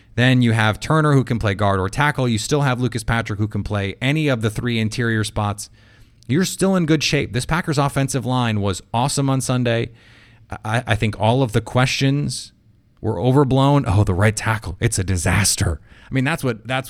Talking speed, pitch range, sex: 200 wpm, 105-125 Hz, male